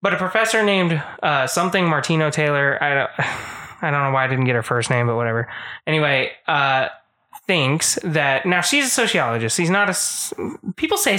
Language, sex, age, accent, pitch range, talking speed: English, male, 20-39, American, 135-170 Hz, 190 wpm